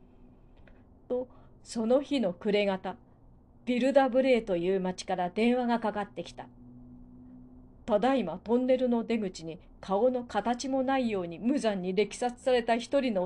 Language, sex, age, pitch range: Japanese, female, 40-59, 180-235 Hz